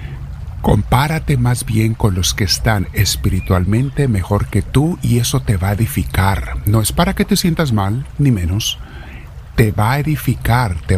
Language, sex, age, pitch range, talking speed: Spanish, male, 60-79, 90-135 Hz, 170 wpm